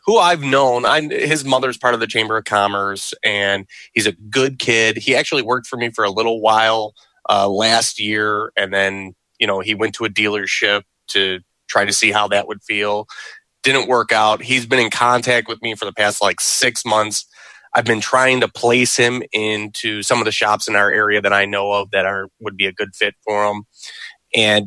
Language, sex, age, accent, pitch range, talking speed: English, male, 20-39, American, 105-120 Hz, 215 wpm